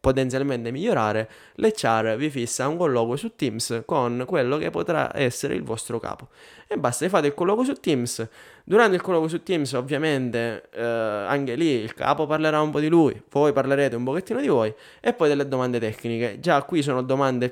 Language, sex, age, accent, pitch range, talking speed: Italian, male, 20-39, native, 115-140 Hz, 190 wpm